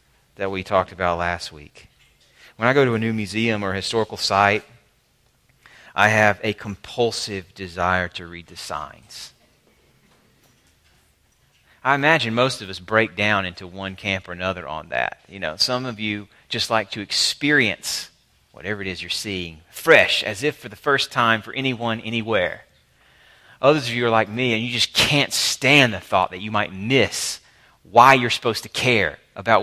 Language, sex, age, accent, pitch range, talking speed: English, male, 30-49, American, 100-130 Hz, 175 wpm